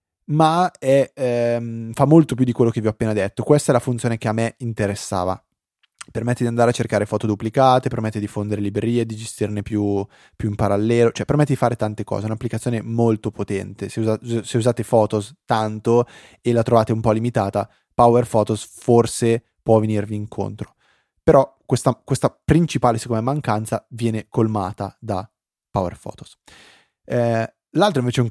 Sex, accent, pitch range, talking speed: male, native, 105-120 Hz, 165 wpm